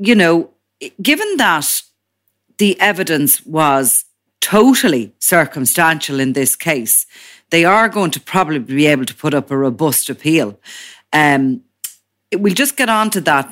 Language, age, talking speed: English, 30-49, 140 wpm